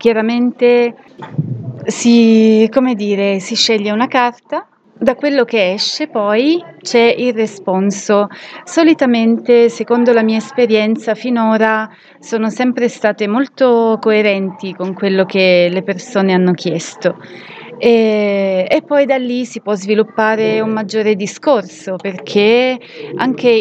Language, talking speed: Italian, 120 wpm